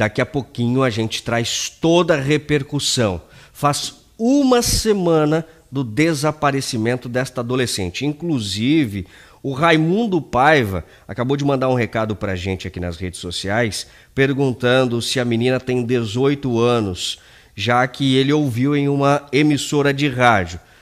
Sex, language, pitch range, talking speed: male, Portuguese, 120-150 Hz, 140 wpm